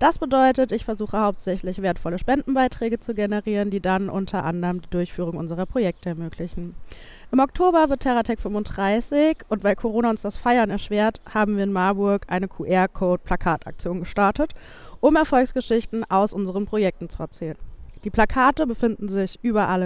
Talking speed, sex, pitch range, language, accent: 150 wpm, female, 185-250 Hz, German, German